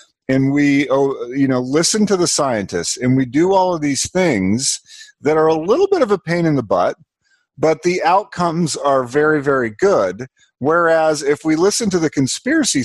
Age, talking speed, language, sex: 40-59, 185 wpm, English, male